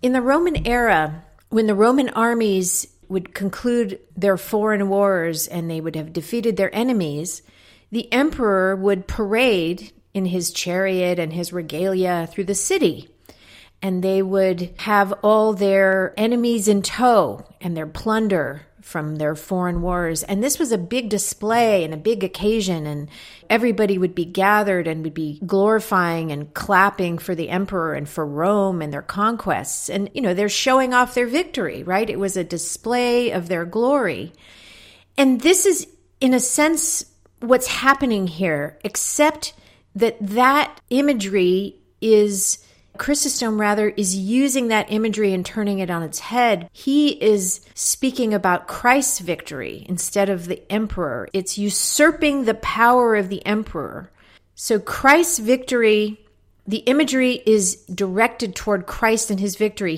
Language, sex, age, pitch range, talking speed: English, female, 40-59, 185-240 Hz, 150 wpm